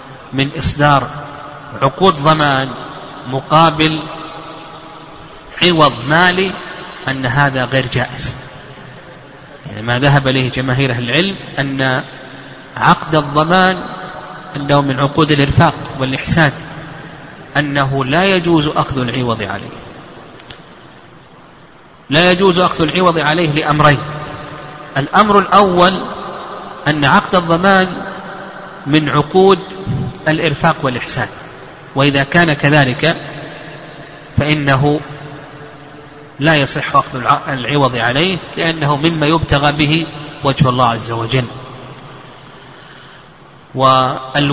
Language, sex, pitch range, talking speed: Arabic, male, 135-165 Hz, 85 wpm